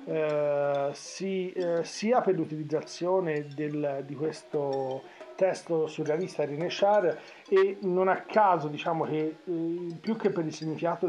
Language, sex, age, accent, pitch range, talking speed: Italian, male, 40-59, native, 150-180 Hz, 115 wpm